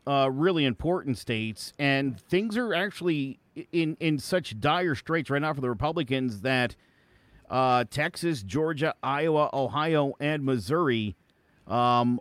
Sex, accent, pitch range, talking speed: male, American, 130-170 Hz, 135 wpm